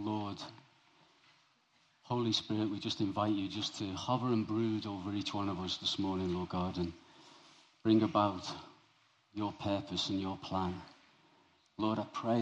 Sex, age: male, 40-59